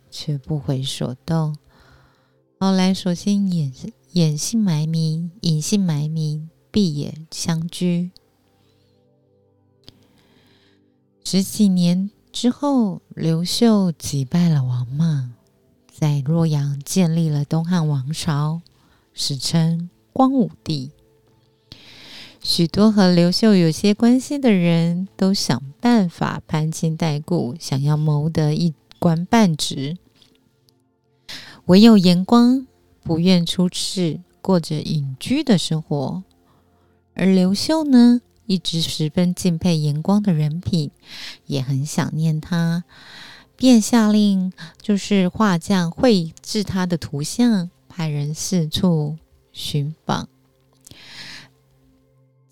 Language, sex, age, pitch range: Chinese, female, 30-49, 145-190 Hz